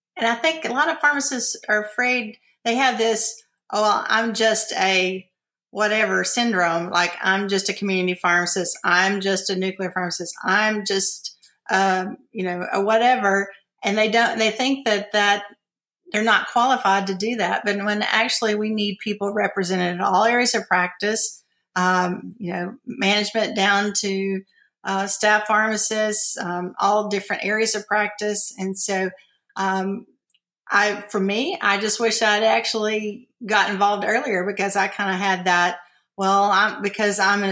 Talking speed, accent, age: 165 wpm, American, 50-69